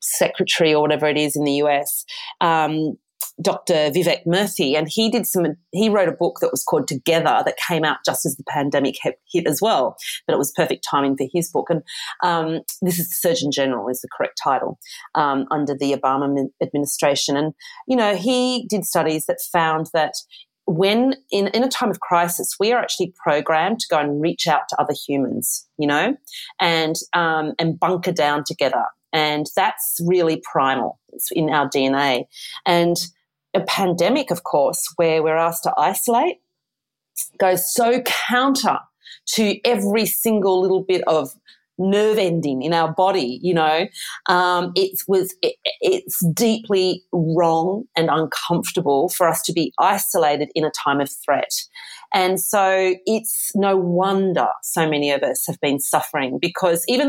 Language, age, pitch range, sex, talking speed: English, 40-59, 150-195 Hz, female, 165 wpm